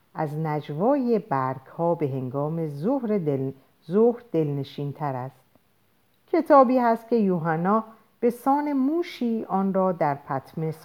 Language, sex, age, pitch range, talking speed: Persian, female, 50-69, 140-235 Hz, 120 wpm